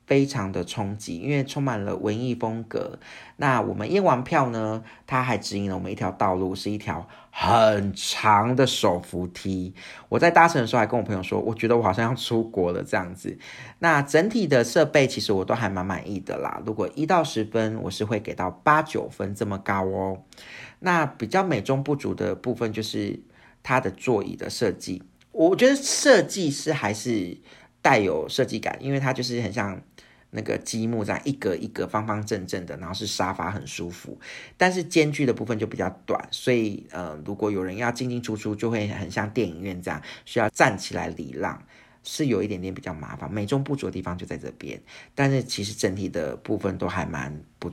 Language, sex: Chinese, male